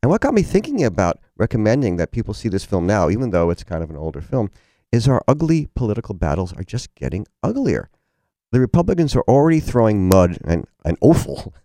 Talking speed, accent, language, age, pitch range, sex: 200 wpm, American, English, 50-69, 80-115 Hz, male